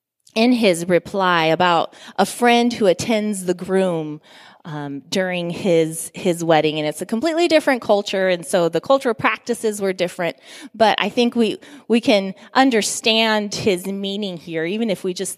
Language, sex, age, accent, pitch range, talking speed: English, female, 20-39, American, 160-220 Hz, 170 wpm